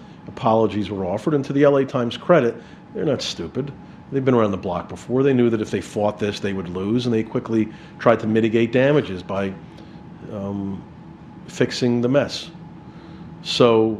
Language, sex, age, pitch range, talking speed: English, male, 40-59, 100-115 Hz, 175 wpm